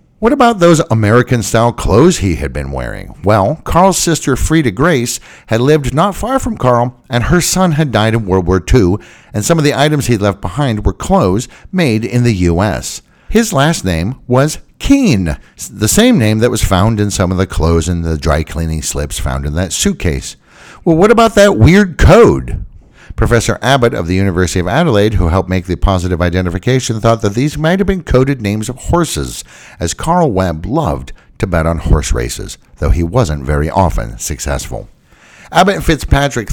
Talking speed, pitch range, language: 185 wpm, 90-145 Hz, English